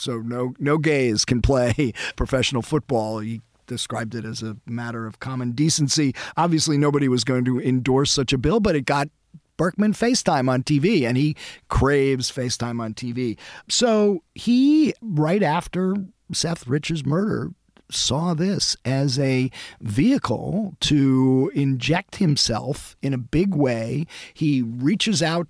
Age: 40-59